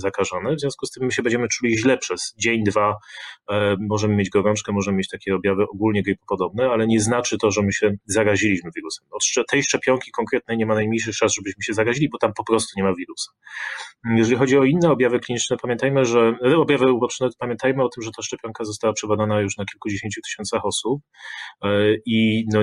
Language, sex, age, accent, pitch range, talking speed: Polish, male, 30-49, native, 100-120 Hz, 200 wpm